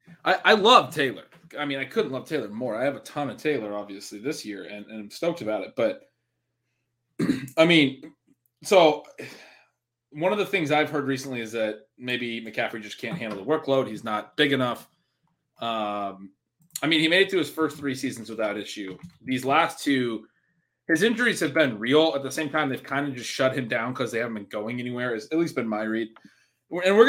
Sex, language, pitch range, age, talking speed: male, English, 120-150 Hz, 20-39, 215 wpm